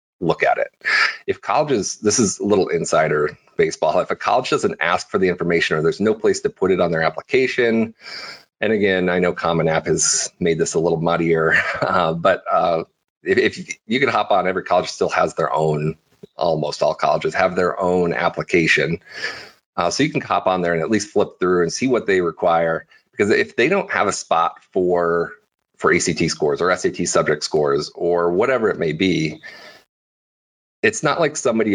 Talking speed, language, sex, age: 195 wpm, English, male, 30-49